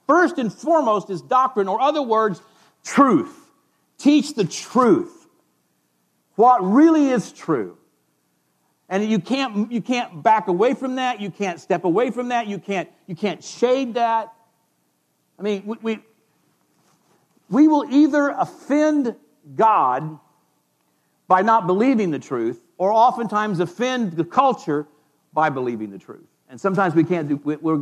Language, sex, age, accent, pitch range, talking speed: English, male, 50-69, American, 160-245 Hz, 140 wpm